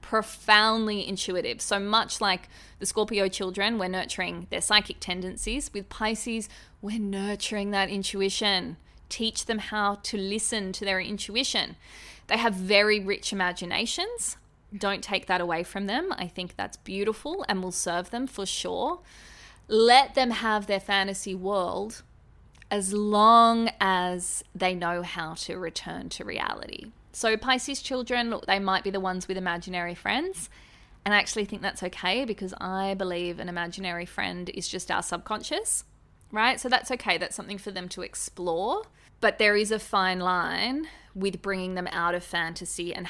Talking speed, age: 160 wpm, 20-39